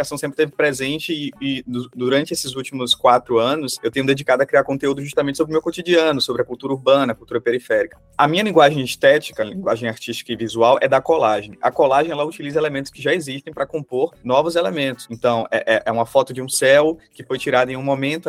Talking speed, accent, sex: 215 wpm, Brazilian, male